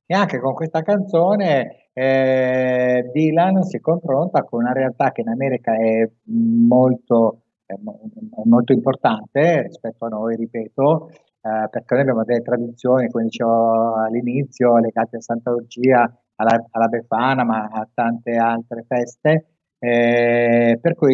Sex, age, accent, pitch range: male, 30-49, native, 115-135 Hz